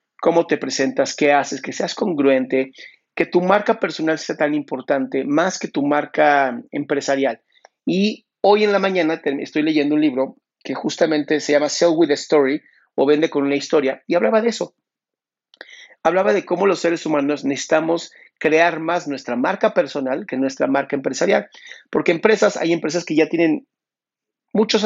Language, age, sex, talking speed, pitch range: Spanish, 40-59, male, 170 wpm, 140-180 Hz